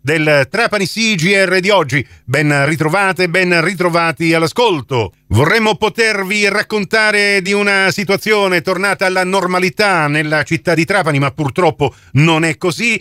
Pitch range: 130-160 Hz